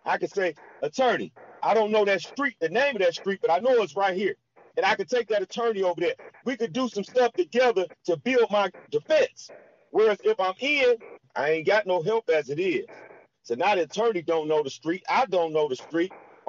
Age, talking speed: 40-59, 230 wpm